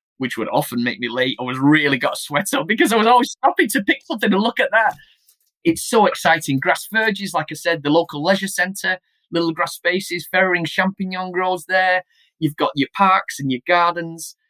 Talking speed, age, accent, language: 210 wpm, 20-39, British, English